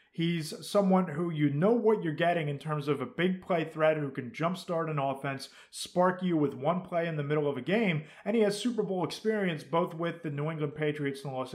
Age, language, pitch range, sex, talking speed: 30-49, English, 145-185 Hz, male, 240 wpm